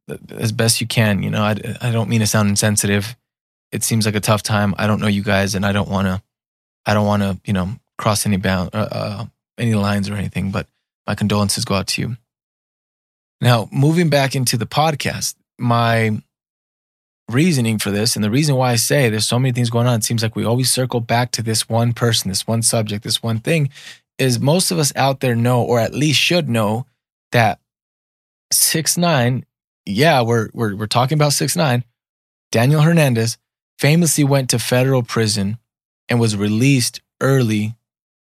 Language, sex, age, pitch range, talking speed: English, male, 20-39, 110-140 Hz, 190 wpm